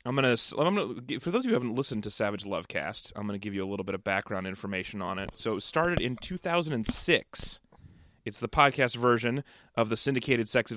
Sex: male